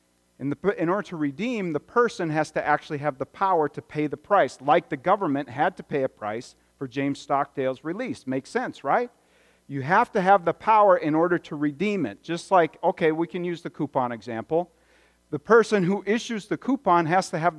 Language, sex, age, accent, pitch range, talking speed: English, male, 40-59, American, 120-180 Hz, 210 wpm